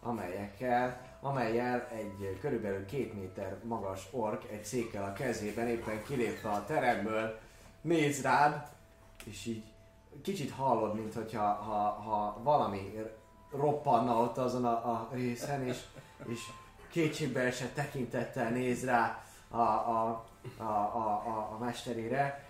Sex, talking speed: male, 125 wpm